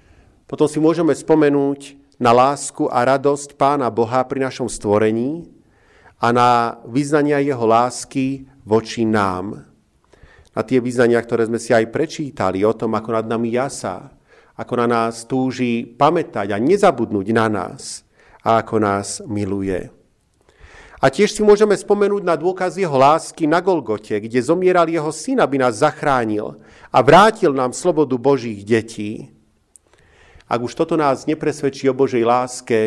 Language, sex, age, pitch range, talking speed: Slovak, male, 40-59, 115-145 Hz, 145 wpm